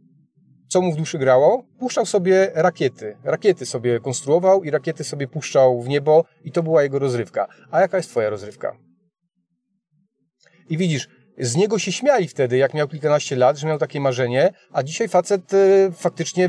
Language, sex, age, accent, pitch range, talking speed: Polish, male, 30-49, native, 140-195 Hz, 165 wpm